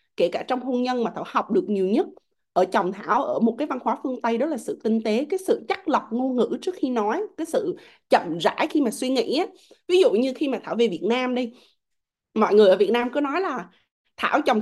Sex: female